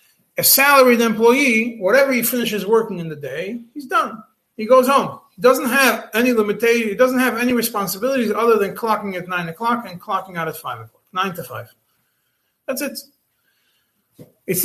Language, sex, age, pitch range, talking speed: English, male, 30-49, 180-240 Hz, 175 wpm